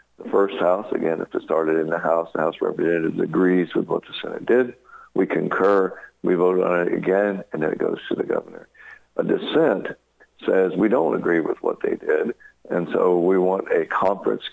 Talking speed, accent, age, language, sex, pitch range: 200 wpm, American, 60-79, English, male, 90-105 Hz